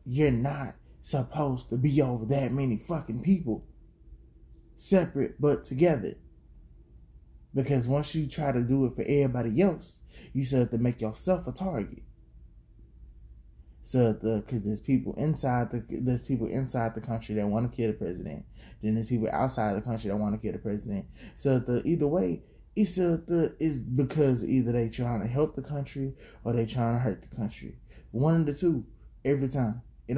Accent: American